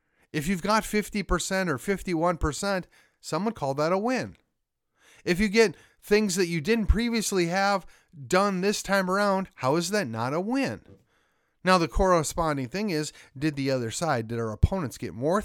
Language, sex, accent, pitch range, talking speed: English, male, American, 130-180 Hz, 170 wpm